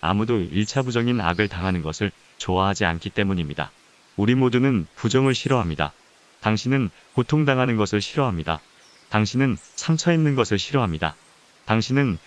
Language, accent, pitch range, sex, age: Korean, native, 95-125 Hz, male, 30-49